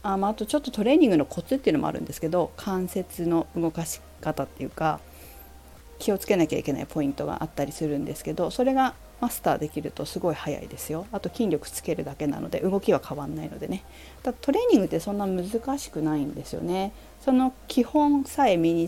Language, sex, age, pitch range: Japanese, female, 40-59, 145-210 Hz